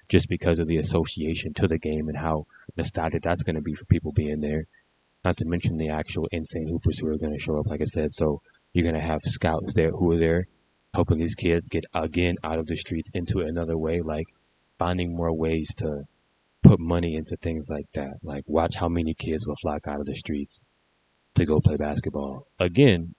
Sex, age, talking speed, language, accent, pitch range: male, 20-39, 215 wpm, English, American, 75-85 Hz